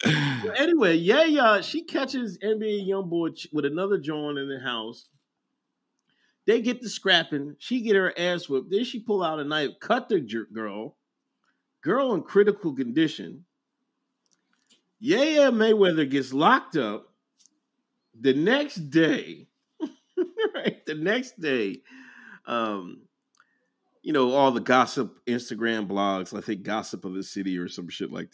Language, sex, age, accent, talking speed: English, male, 40-59, American, 145 wpm